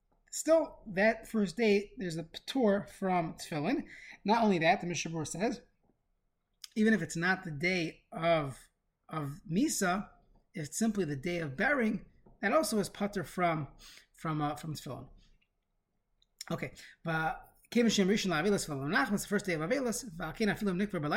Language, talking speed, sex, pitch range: English, 130 wpm, male, 150-200 Hz